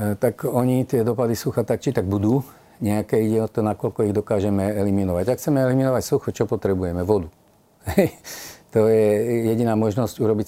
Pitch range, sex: 100-115 Hz, male